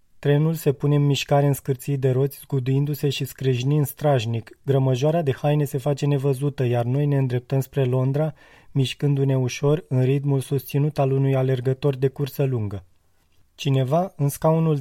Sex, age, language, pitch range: male, 20-39, Romanian, 130-150 Hz